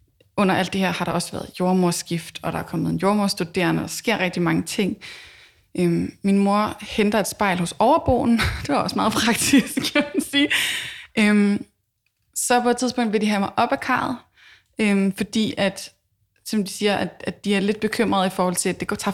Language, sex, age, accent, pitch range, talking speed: Danish, female, 20-39, native, 175-215 Hz, 210 wpm